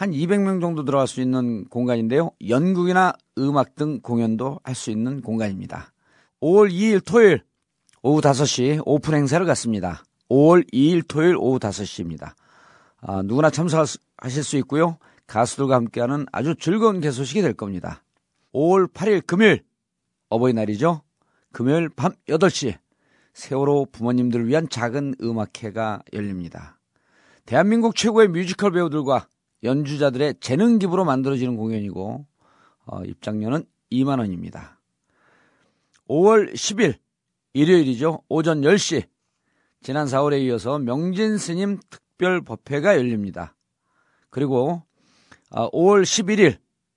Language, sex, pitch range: Korean, male, 120-175 Hz